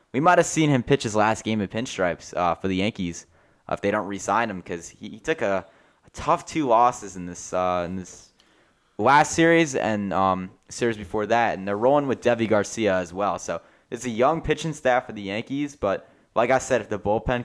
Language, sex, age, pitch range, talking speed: English, male, 10-29, 100-130 Hz, 225 wpm